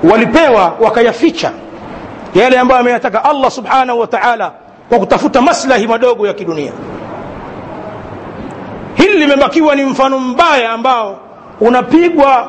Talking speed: 105 wpm